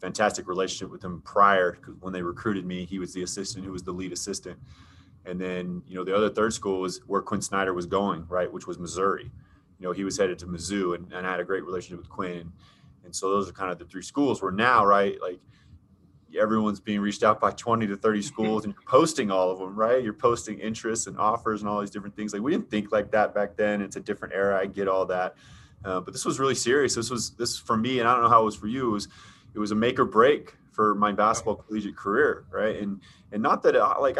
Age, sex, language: 20-39, male, English